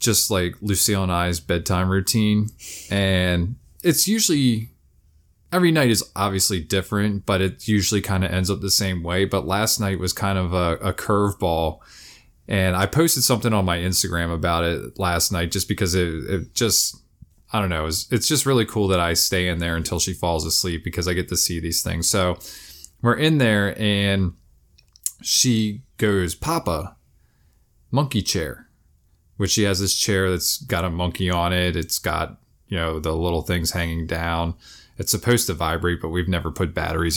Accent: American